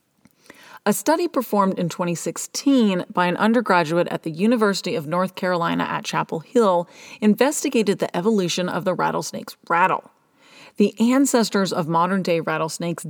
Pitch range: 175-245 Hz